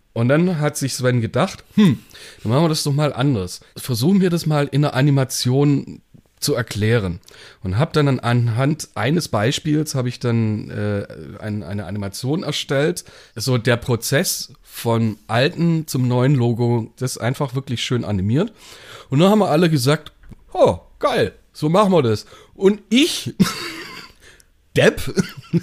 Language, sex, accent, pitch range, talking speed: German, male, German, 120-155 Hz, 155 wpm